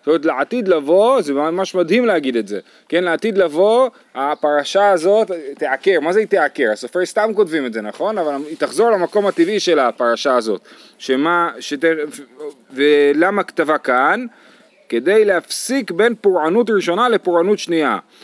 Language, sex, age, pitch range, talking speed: Hebrew, male, 30-49, 145-210 Hz, 150 wpm